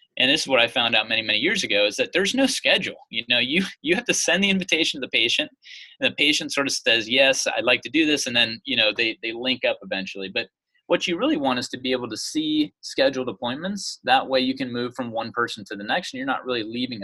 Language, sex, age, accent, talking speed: English, male, 30-49, American, 275 wpm